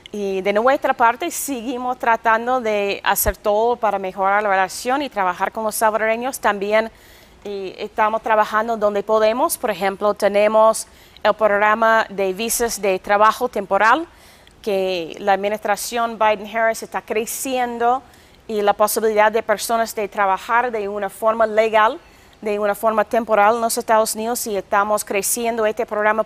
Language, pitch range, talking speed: Spanish, 205-230 Hz, 145 wpm